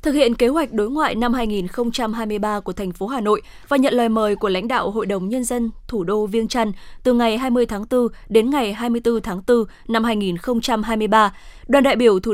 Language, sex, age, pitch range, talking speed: Vietnamese, female, 20-39, 210-260 Hz, 215 wpm